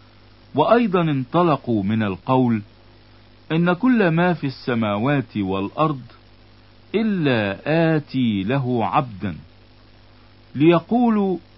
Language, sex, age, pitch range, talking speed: Italian, male, 50-69, 110-155 Hz, 80 wpm